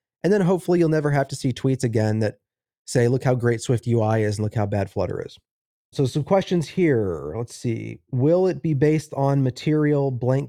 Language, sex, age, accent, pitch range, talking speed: English, male, 30-49, American, 120-150 Hz, 210 wpm